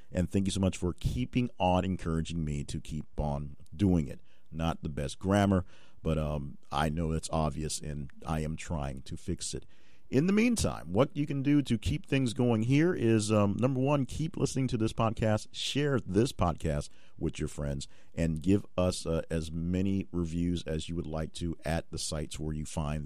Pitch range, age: 80-100 Hz, 50-69